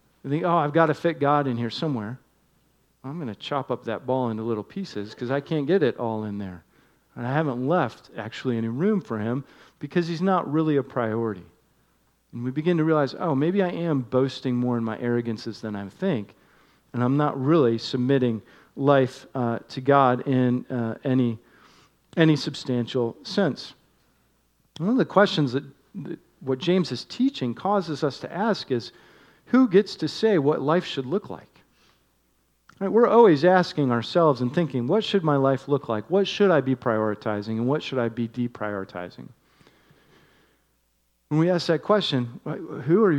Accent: American